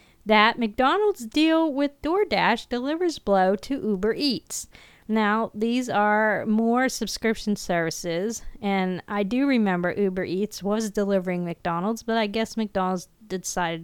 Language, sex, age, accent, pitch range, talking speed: English, female, 40-59, American, 195-255 Hz, 130 wpm